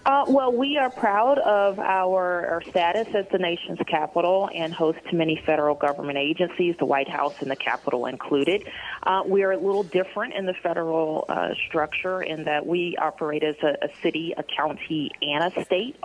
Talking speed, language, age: 190 wpm, English, 30-49